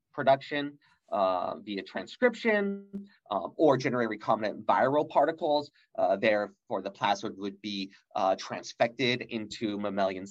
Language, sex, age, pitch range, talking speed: English, male, 30-49, 115-150 Hz, 115 wpm